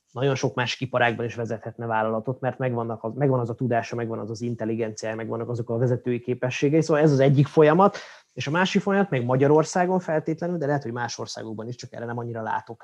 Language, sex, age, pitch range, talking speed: Hungarian, male, 20-39, 120-155 Hz, 215 wpm